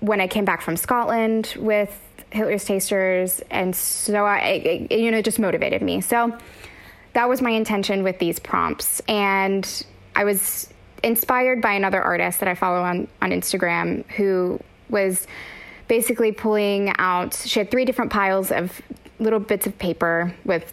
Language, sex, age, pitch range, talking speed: English, female, 20-39, 185-220 Hz, 160 wpm